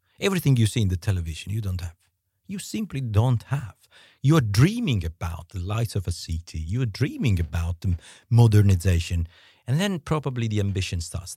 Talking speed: 180 wpm